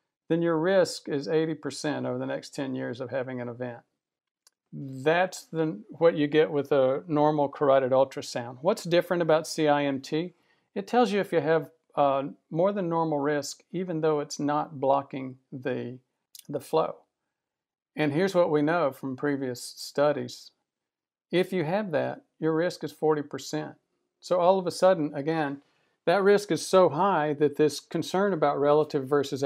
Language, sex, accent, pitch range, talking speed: English, male, American, 140-165 Hz, 160 wpm